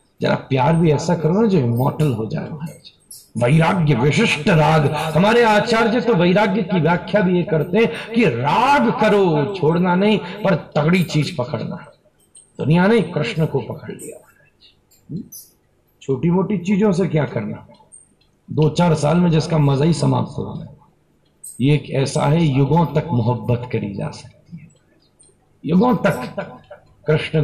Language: Hindi